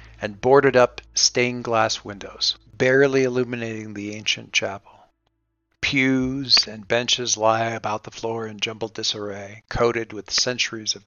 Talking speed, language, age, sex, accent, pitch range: 125 wpm, English, 50-69, male, American, 110-135 Hz